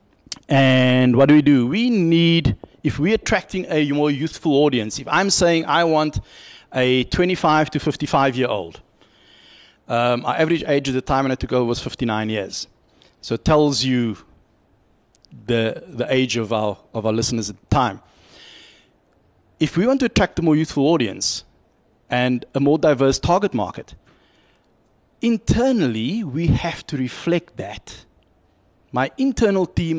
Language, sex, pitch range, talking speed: English, male, 120-165 Hz, 150 wpm